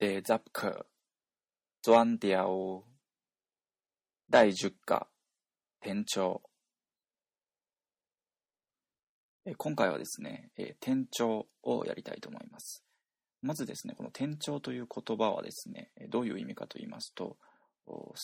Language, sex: Japanese, male